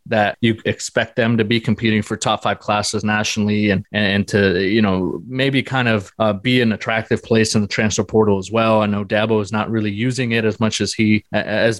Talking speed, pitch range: 230 wpm, 105-120 Hz